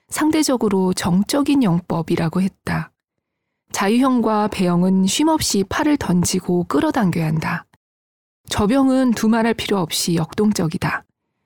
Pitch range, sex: 180-255 Hz, female